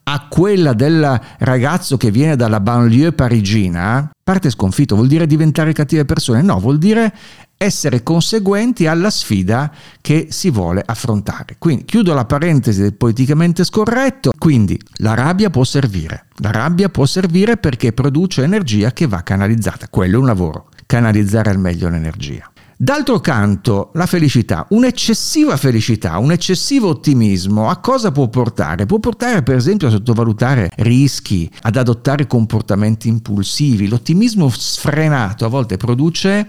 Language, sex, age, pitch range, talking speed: Italian, male, 50-69, 105-155 Hz, 140 wpm